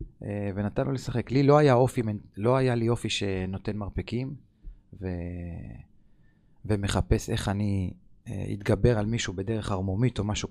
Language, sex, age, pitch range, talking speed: Hebrew, male, 30-49, 100-130 Hz, 130 wpm